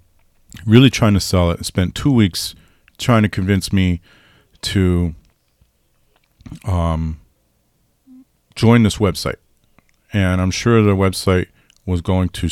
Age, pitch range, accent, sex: 40-59, 85-105 Hz, American, male